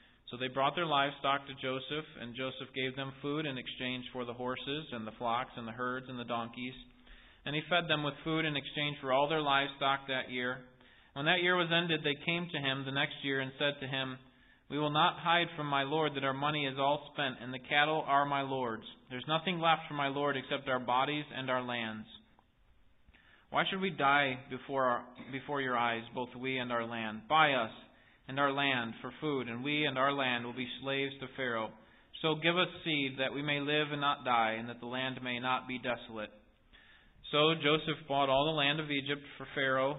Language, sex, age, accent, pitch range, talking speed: English, male, 30-49, American, 125-145 Hz, 220 wpm